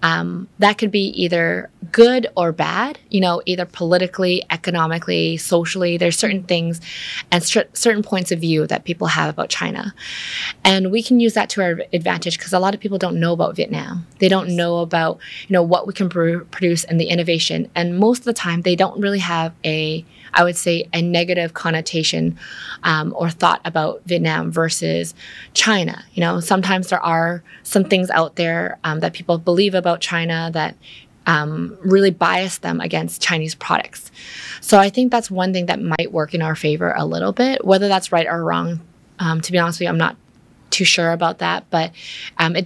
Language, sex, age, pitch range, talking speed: Vietnamese, female, 20-39, 165-195 Hz, 195 wpm